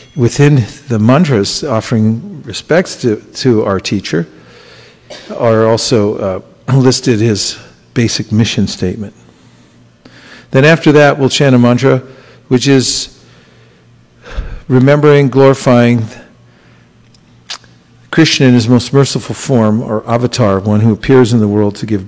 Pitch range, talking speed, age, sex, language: 105-130 Hz, 120 wpm, 50-69, male, English